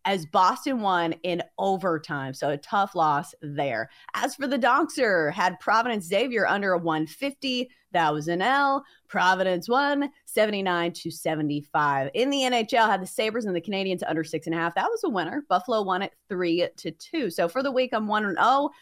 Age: 30-49